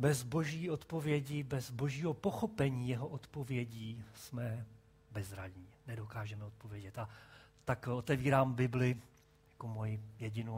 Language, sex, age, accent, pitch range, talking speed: Czech, male, 40-59, native, 110-135 Hz, 100 wpm